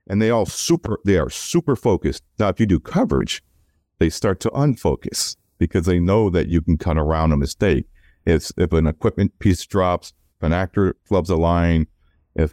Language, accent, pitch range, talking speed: English, American, 85-105 Hz, 190 wpm